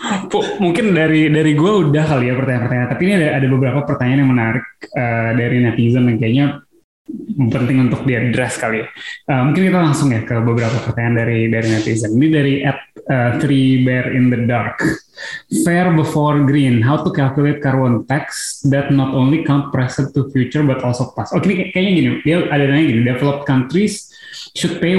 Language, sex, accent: Indonesian, male, native